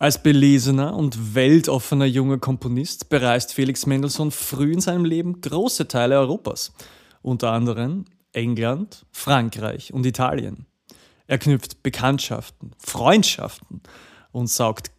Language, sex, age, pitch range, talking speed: German, male, 30-49, 115-160 Hz, 110 wpm